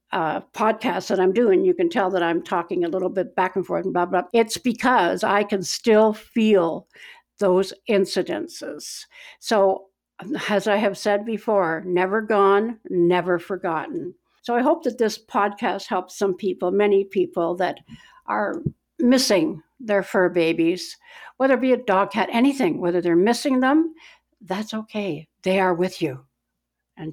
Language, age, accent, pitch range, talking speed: English, 60-79, American, 175-240 Hz, 165 wpm